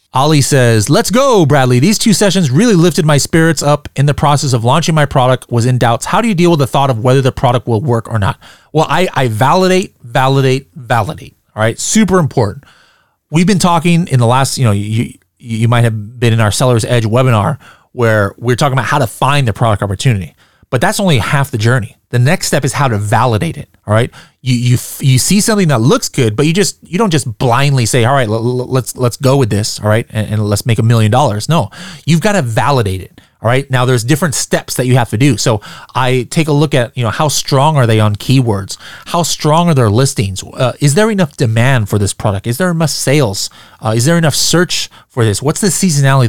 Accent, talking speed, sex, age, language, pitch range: American, 240 wpm, male, 30-49, English, 115-155 Hz